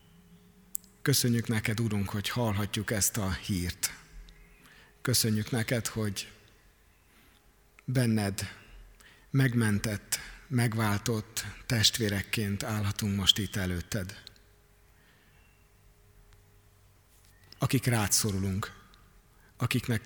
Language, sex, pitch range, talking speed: Hungarian, male, 100-120 Hz, 65 wpm